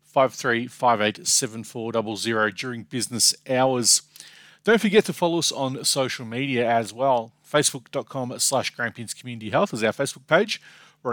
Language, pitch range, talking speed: English, 115-150 Hz, 130 wpm